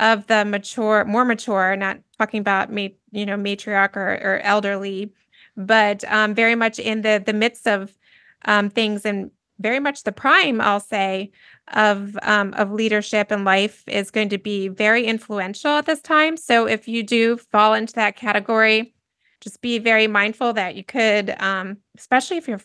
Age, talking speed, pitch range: 20-39, 180 wpm, 205-235 Hz